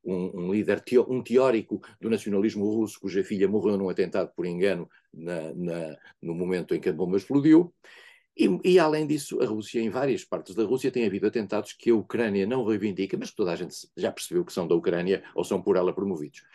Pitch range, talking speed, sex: 95-135 Hz, 220 wpm, male